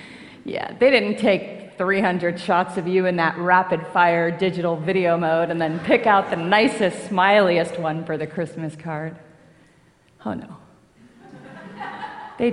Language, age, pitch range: English, 30-49, 190-275 Hz